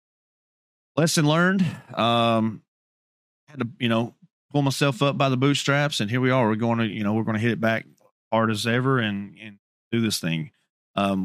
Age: 30-49